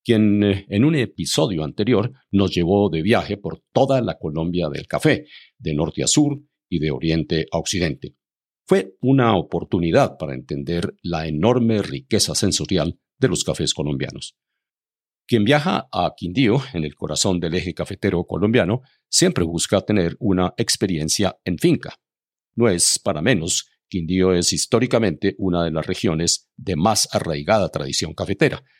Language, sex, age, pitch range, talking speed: Spanish, male, 50-69, 85-120 Hz, 150 wpm